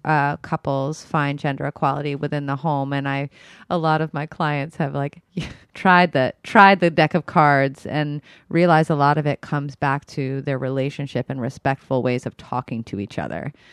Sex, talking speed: female, 190 wpm